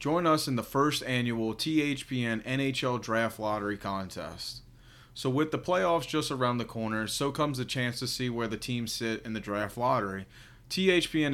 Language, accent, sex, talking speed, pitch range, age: English, American, male, 180 wpm, 115-140 Hz, 30-49